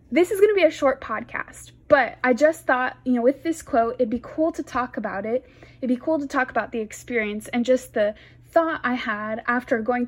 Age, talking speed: 20-39, 240 wpm